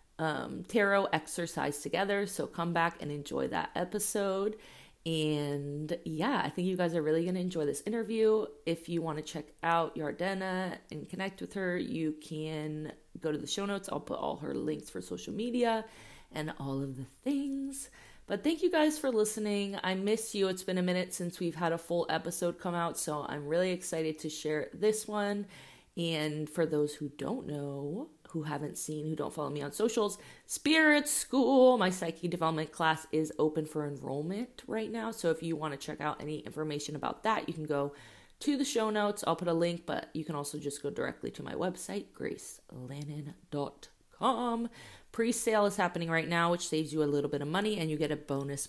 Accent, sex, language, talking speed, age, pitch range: American, female, English, 200 wpm, 30-49, 150-200 Hz